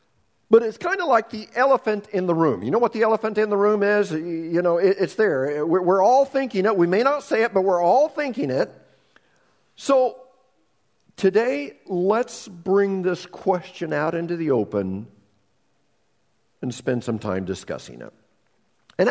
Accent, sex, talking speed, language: American, male, 170 wpm, English